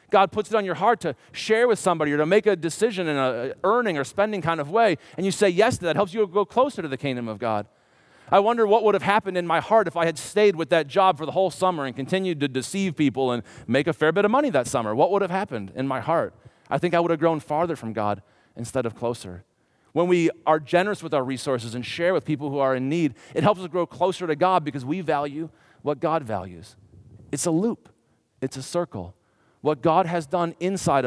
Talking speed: 255 wpm